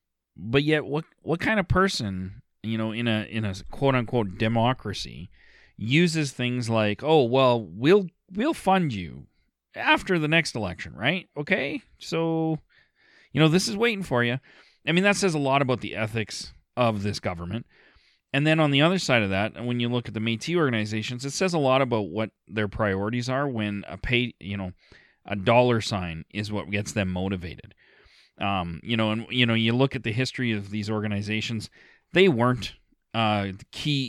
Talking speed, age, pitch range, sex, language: 190 wpm, 30-49, 100-135 Hz, male, English